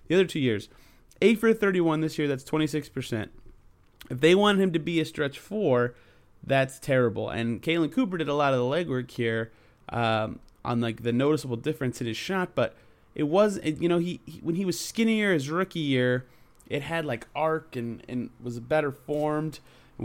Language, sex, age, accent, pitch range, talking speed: English, male, 30-49, American, 120-160 Hz, 200 wpm